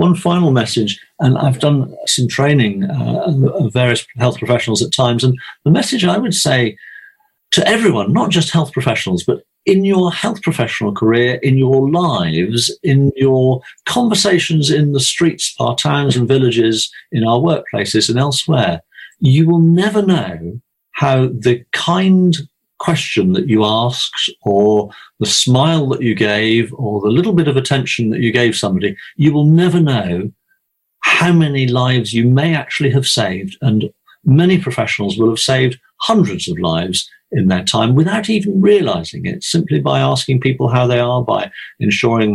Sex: male